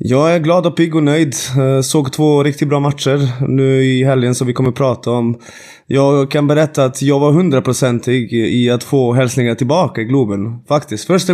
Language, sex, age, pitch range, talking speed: Swedish, male, 20-39, 125-160 Hz, 190 wpm